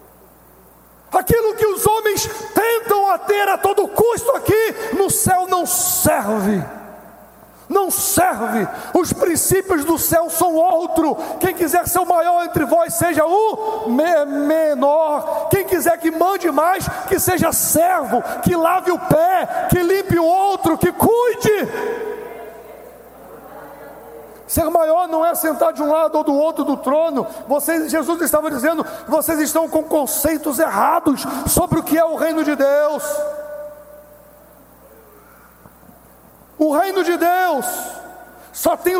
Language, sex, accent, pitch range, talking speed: English, male, Brazilian, 295-360 Hz, 130 wpm